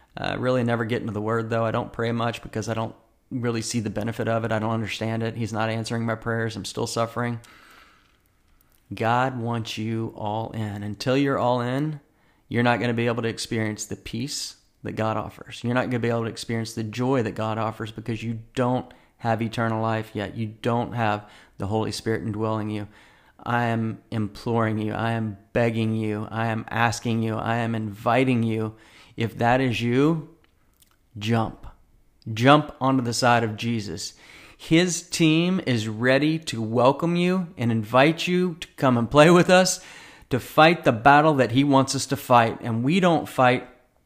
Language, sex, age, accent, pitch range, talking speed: English, male, 40-59, American, 110-125 Hz, 190 wpm